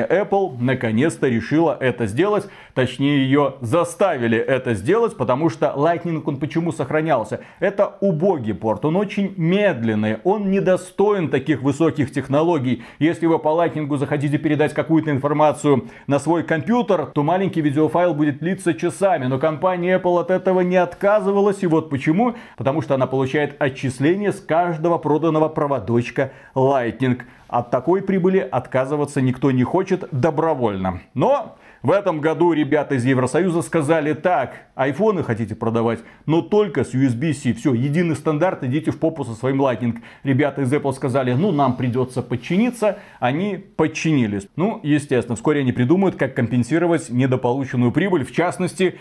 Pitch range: 130-175 Hz